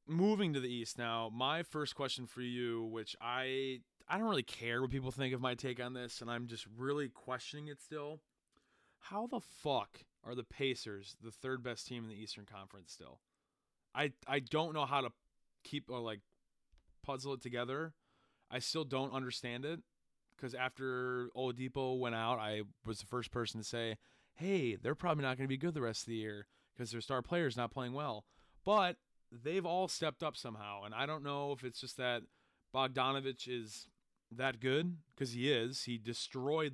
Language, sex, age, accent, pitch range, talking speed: English, male, 20-39, American, 115-140 Hz, 195 wpm